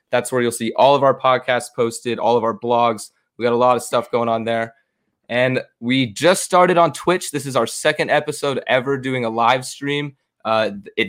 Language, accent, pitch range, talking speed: English, American, 115-140 Hz, 210 wpm